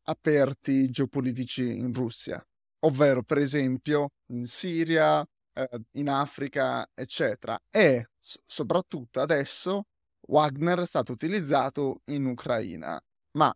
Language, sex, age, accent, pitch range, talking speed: Italian, male, 20-39, native, 135-170 Hz, 100 wpm